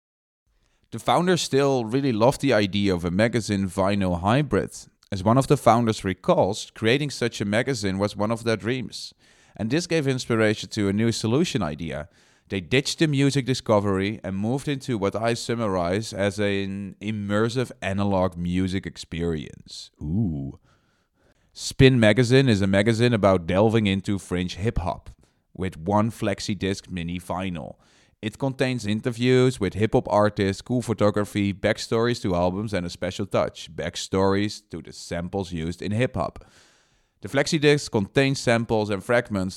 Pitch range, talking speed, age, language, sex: 95-120 Hz, 145 wpm, 30-49, English, male